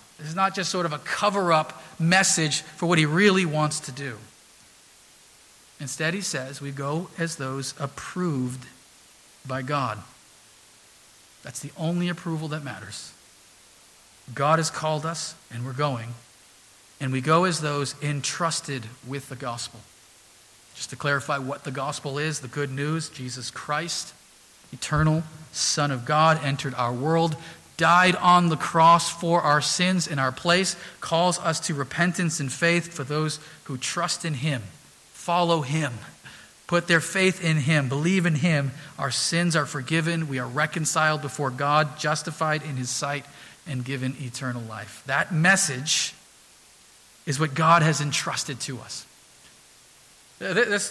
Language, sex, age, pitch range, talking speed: English, male, 40-59, 135-165 Hz, 150 wpm